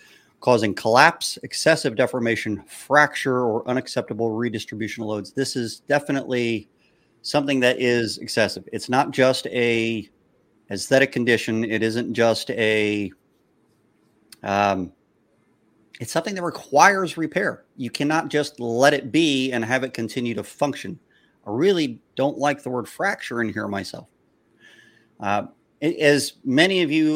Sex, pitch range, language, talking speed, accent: male, 110-135 Hz, English, 135 wpm, American